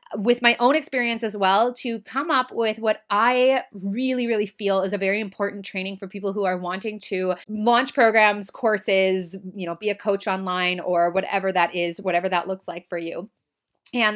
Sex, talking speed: female, 195 wpm